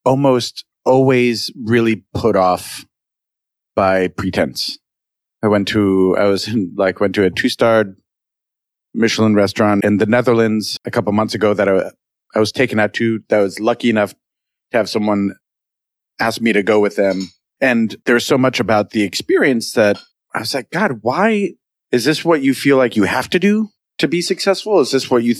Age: 30-49